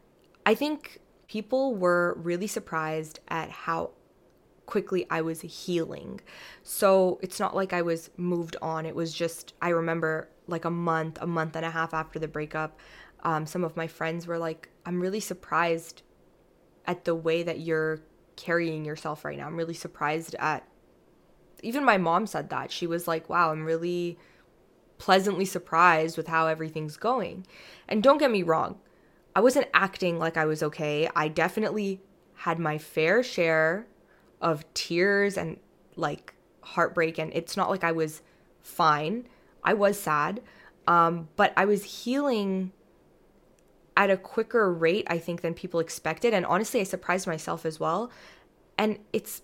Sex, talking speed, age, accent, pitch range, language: female, 160 wpm, 20-39, American, 160-195 Hz, English